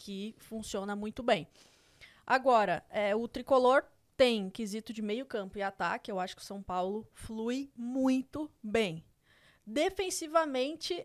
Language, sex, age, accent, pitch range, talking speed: Portuguese, female, 20-39, Brazilian, 195-245 Hz, 130 wpm